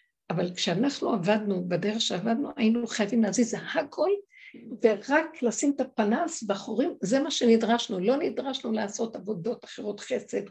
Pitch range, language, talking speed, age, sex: 195-260 Hz, Hebrew, 135 wpm, 60-79, female